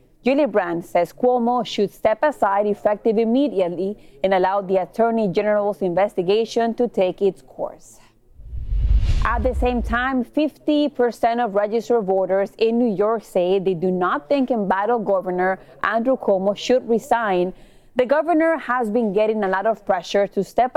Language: English